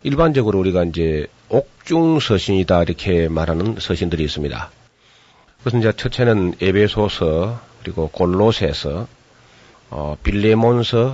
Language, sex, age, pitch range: Korean, male, 40-59, 90-120 Hz